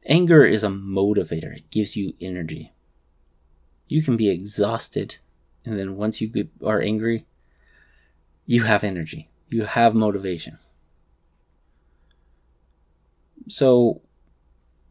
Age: 30-49